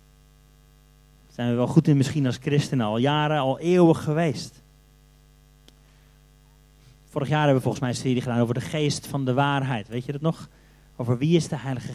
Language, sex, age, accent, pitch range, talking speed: Dutch, male, 40-59, Dutch, 125-150 Hz, 185 wpm